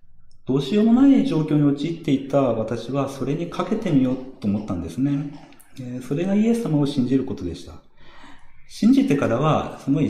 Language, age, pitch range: Japanese, 40-59, 110-160 Hz